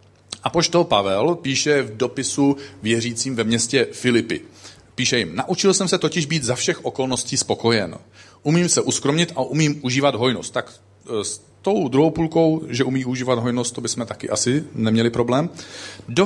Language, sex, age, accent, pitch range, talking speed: Czech, male, 40-59, native, 110-150 Hz, 160 wpm